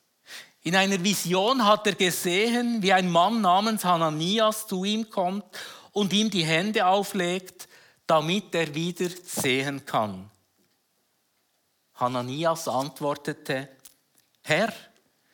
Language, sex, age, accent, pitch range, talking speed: German, male, 50-69, Austrian, 170-220 Hz, 105 wpm